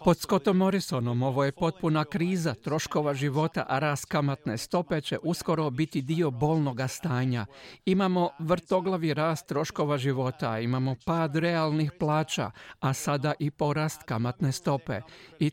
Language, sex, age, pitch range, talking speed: Croatian, male, 50-69, 135-165 Hz, 135 wpm